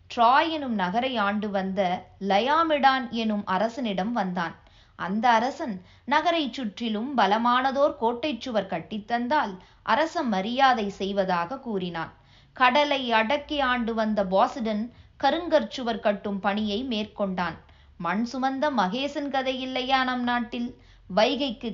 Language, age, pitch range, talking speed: Tamil, 20-39, 200-255 Hz, 105 wpm